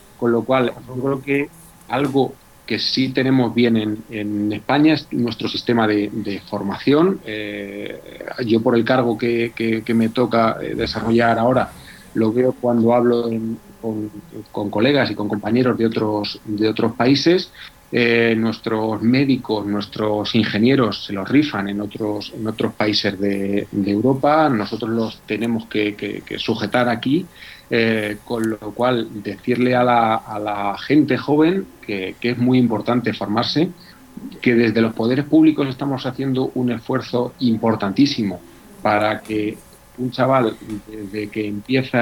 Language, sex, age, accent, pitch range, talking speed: Spanish, male, 40-59, Spanish, 105-125 Hz, 150 wpm